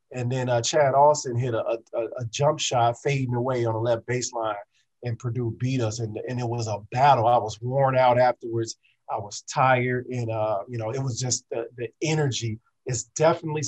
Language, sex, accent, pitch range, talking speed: English, male, American, 120-140 Hz, 205 wpm